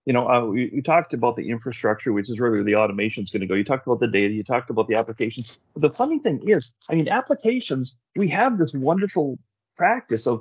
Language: English